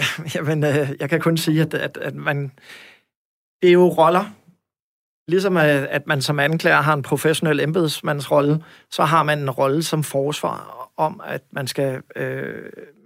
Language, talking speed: Danish, 160 wpm